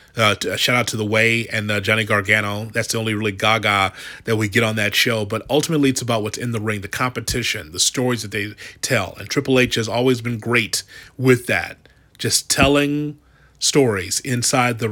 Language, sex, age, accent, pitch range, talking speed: English, male, 30-49, American, 110-125 Hz, 205 wpm